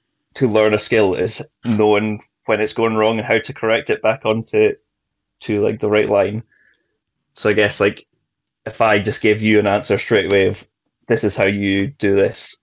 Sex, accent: male, British